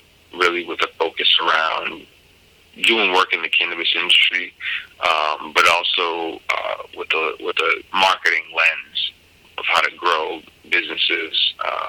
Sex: male